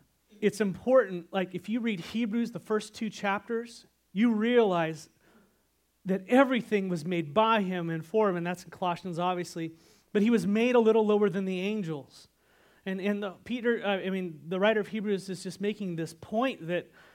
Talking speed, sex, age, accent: 185 wpm, male, 30-49, American